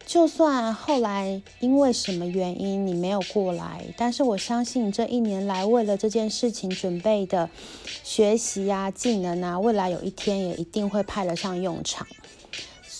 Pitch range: 185-230 Hz